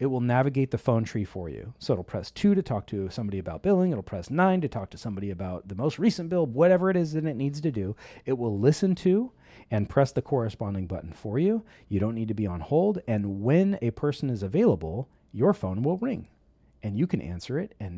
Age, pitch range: 40-59, 100-145 Hz